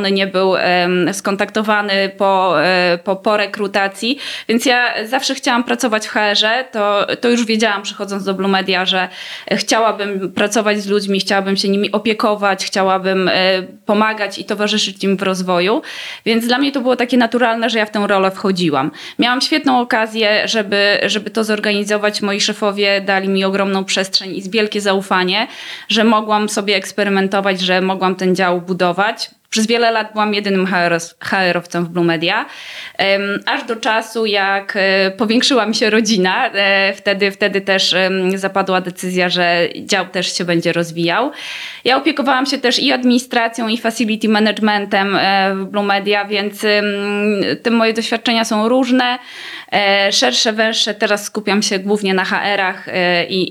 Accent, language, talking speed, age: native, Polish, 150 wpm, 20-39